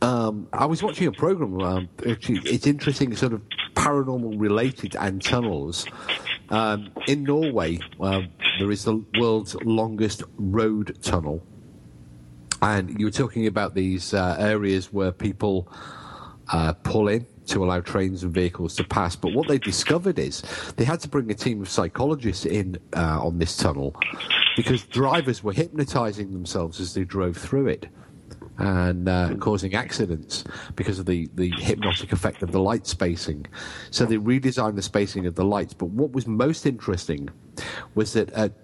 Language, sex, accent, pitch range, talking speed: English, male, British, 90-115 Hz, 160 wpm